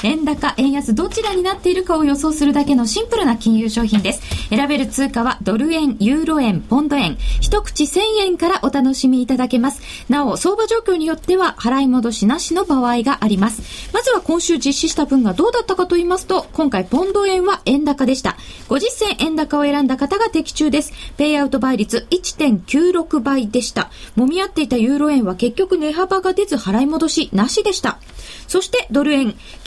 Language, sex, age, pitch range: Japanese, female, 20-39, 245-355 Hz